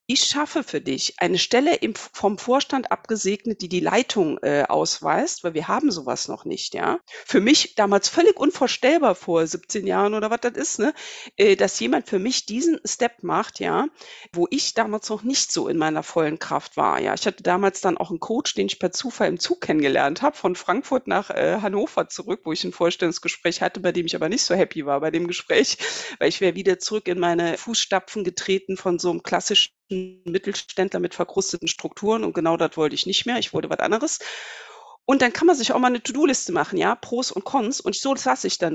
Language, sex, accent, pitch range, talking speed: German, female, German, 180-270 Hz, 215 wpm